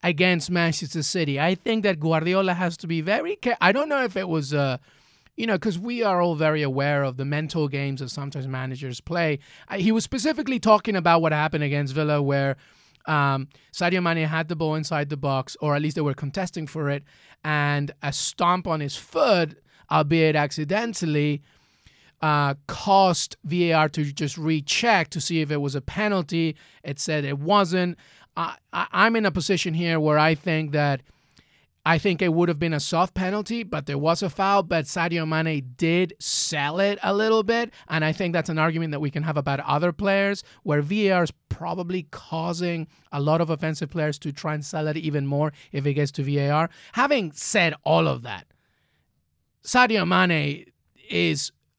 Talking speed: 190 wpm